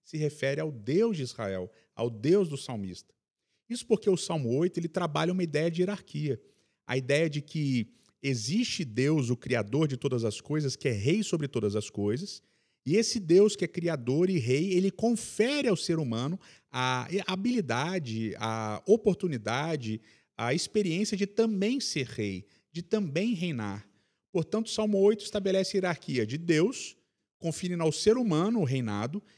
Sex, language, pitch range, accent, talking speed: male, Portuguese, 125-185 Hz, Brazilian, 165 wpm